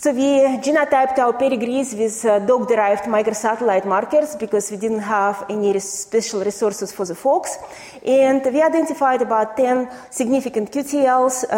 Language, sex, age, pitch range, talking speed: English, female, 30-49, 215-275 Hz, 140 wpm